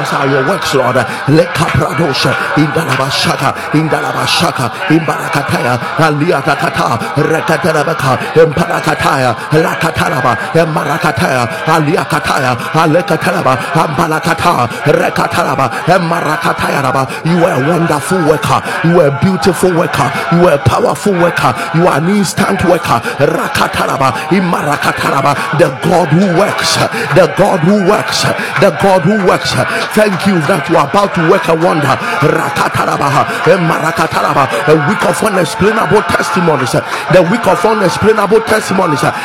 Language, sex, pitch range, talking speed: English, male, 155-195 Hz, 135 wpm